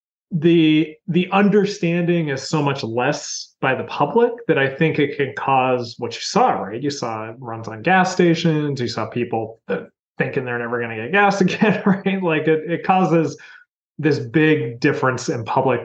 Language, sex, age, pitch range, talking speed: English, male, 30-49, 120-165 Hz, 180 wpm